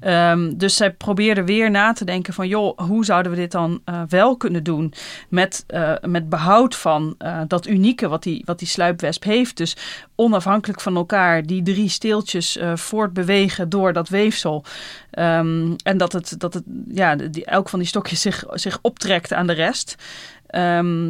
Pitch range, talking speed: 170-205 Hz, 180 wpm